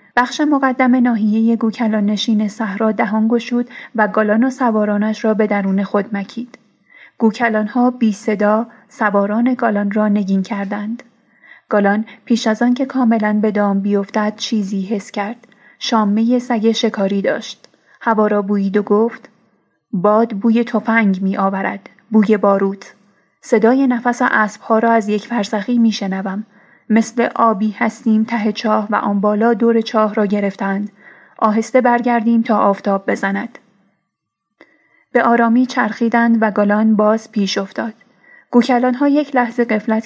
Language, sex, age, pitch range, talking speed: Persian, female, 30-49, 205-235 Hz, 140 wpm